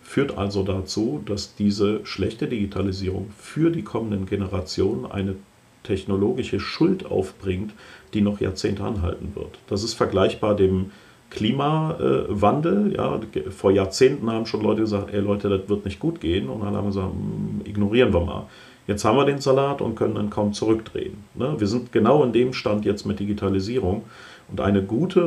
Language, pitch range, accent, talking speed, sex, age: German, 95-110 Hz, German, 160 wpm, male, 40-59